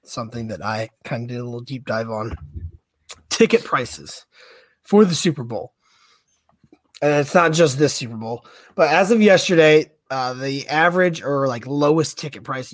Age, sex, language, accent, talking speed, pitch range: 20-39, male, English, American, 170 wpm, 115-155 Hz